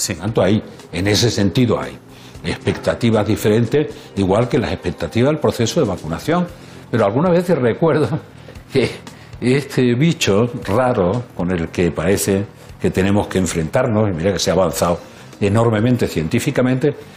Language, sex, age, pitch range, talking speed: Spanish, male, 60-79, 105-150 Hz, 145 wpm